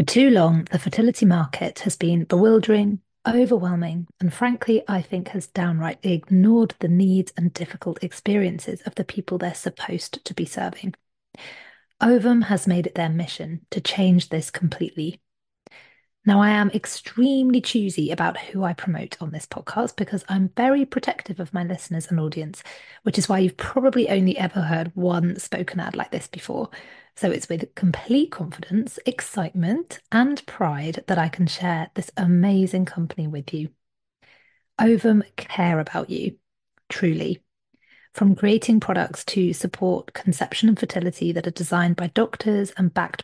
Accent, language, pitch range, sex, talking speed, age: British, English, 175-215 Hz, female, 155 wpm, 30-49